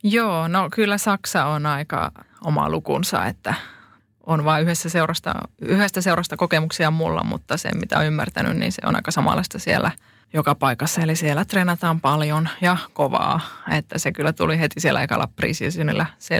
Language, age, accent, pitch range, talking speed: Finnish, 20-39, native, 155-180 Hz, 155 wpm